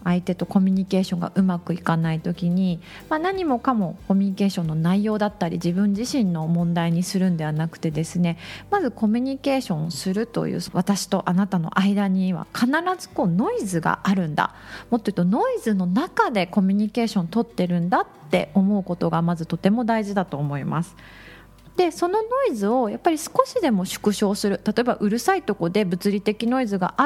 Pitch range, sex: 180-250 Hz, female